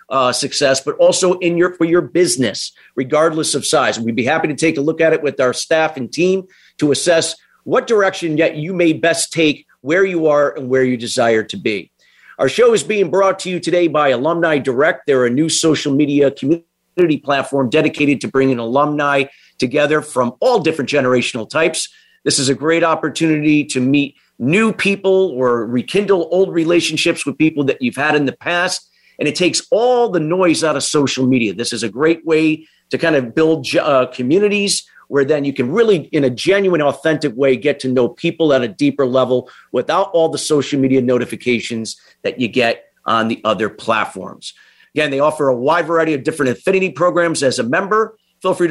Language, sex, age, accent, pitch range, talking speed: English, male, 40-59, American, 135-175 Hz, 200 wpm